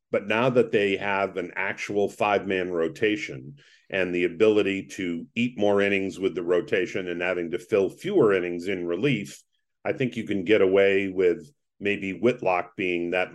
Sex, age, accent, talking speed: male, 50-69, American, 170 wpm